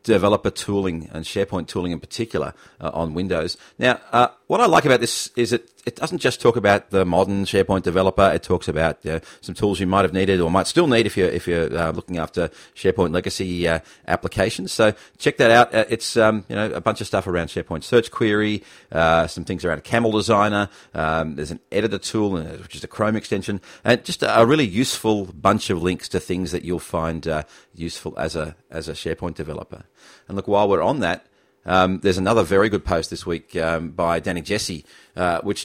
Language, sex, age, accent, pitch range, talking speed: English, male, 40-59, Australian, 85-100 Hz, 215 wpm